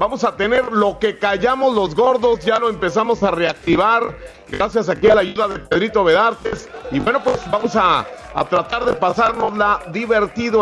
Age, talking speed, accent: 40-59, 175 wpm, Mexican